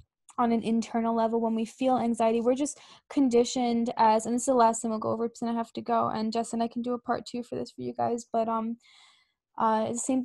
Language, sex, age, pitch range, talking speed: English, female, 10-29, 225-255 Hz, 270 wpm